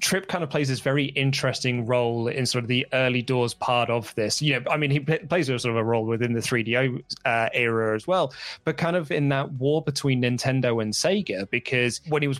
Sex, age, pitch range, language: male, 20-39, 120-140 Hz, English